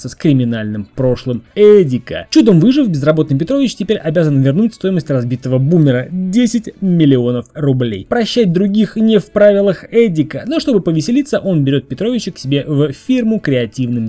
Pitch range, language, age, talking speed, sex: 130-190 Hz, Russian, 20-39, 145 wpm, male